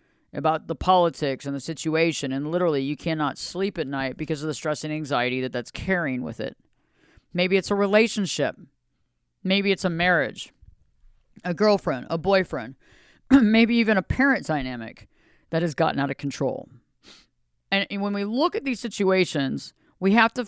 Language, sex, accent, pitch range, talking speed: English, female, American, 145-195 Hz, 170 wpm